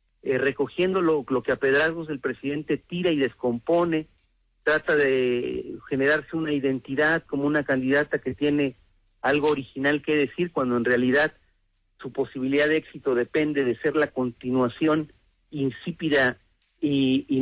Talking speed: 140 wpm